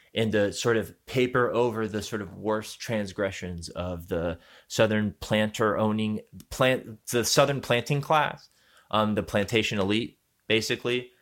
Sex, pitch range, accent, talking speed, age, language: male, 95-125 Hz, American, 140 wpm, 20-39, English